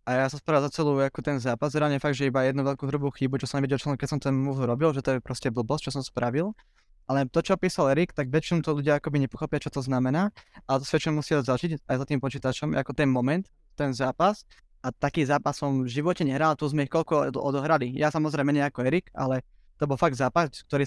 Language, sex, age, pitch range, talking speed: Slovak, male, 20-39, 135-155 Hz, 245 wpm